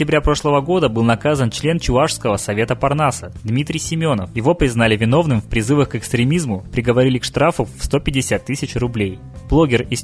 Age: 20-39